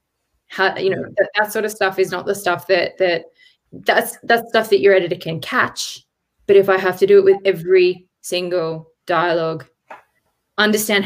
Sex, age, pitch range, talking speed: female, 20-39, 170-195 Hz, 180 wpm